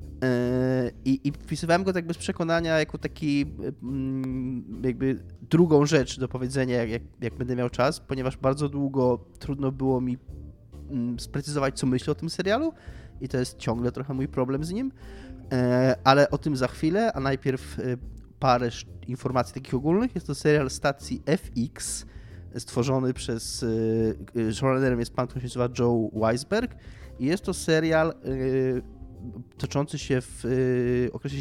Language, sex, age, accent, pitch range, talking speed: Polish, male, 20-39, native, 115-140 Hz, 140 wpm